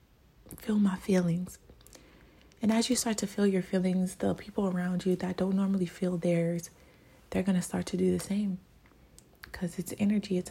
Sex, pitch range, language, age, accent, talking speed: female, 175-195 Hz, English, 20-39, American, 185 wpm